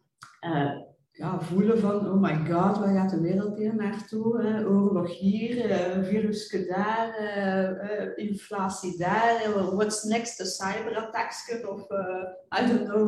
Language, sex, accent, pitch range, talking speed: Dutch, female, Dutch, 185-225 Hz, 145 wpm